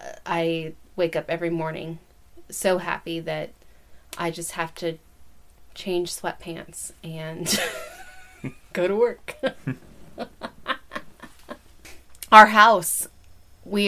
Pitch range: 160-180 Hz